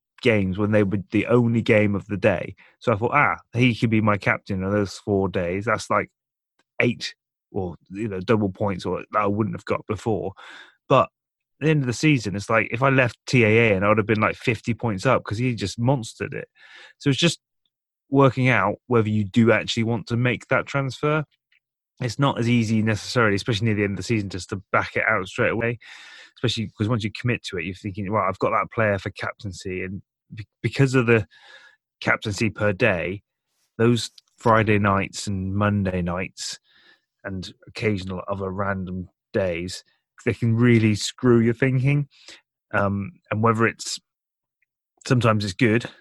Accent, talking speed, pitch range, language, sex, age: British, 190 wpm, 100-120 Hz, English, male, 20-39